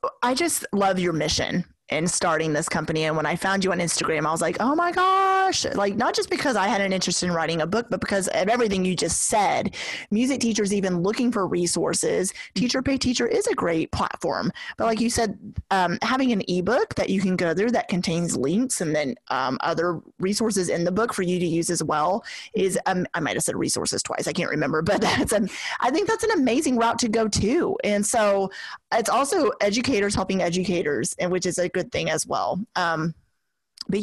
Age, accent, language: 30-49, American, English